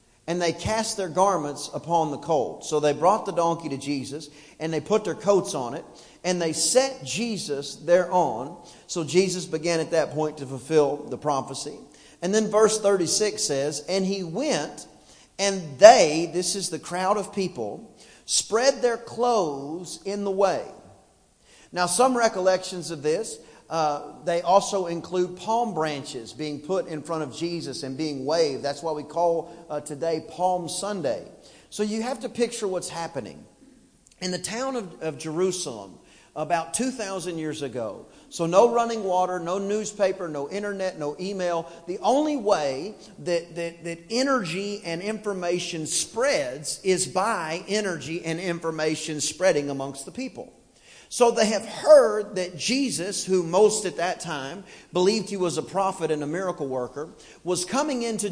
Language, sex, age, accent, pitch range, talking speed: English, male, 40-59, American, 160-205 Hz, 160 wpm